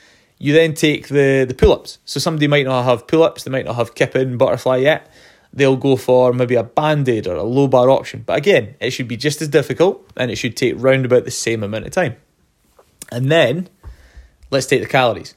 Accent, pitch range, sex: British, 125-155 Hz, male